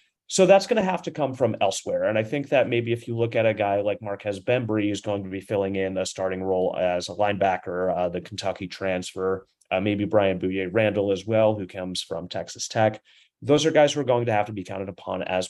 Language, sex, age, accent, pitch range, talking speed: English, male, 30-49, American, 95-120 Hz, 245 wpm